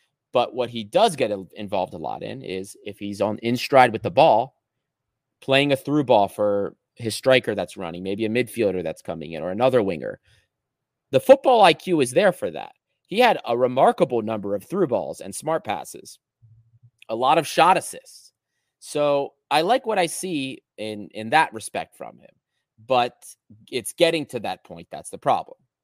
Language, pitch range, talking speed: English, 110-145 Hz, 185 wpm